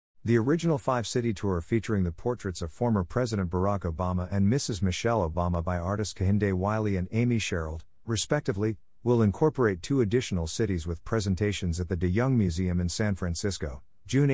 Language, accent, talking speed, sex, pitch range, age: English, American, 170 wpm, male, 90-115 Hz, 50-69